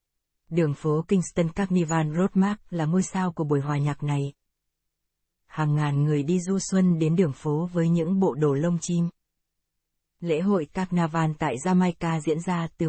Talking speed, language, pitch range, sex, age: 170 wpm, Vietnamese, 160-185 Hz, female, 20-39